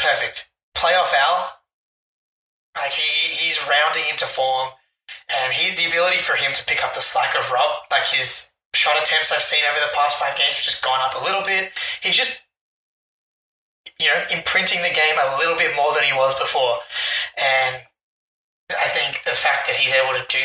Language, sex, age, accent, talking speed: English, male, 20-39, Australian, 190 wpm